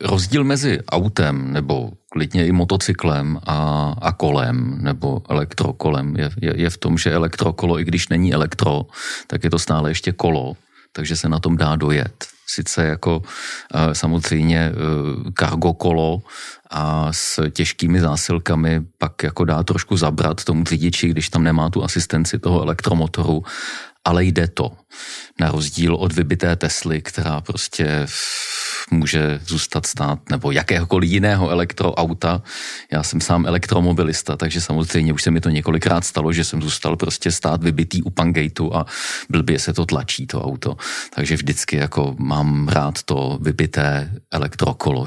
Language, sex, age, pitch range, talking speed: English, male, 40-59, 80-90 Hz, 145 wpm